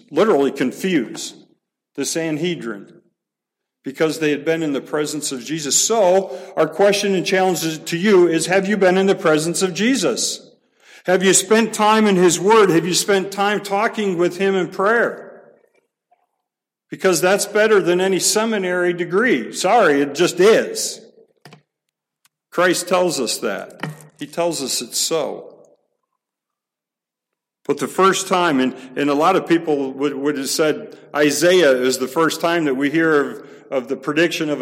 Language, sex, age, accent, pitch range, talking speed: English, male, 50-69, American, 145-190 Hz, 160 wpm